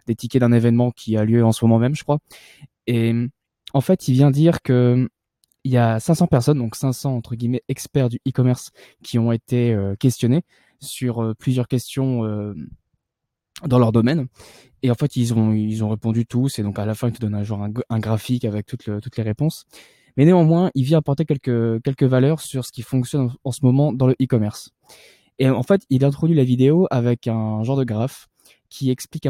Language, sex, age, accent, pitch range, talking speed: French, male, 20-39, French, 115-140 Hz, 215 wpm